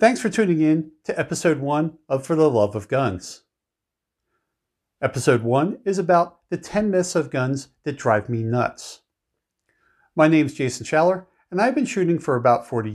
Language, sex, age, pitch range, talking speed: English, male, 50-69, 125-180 Hz, 175 wpm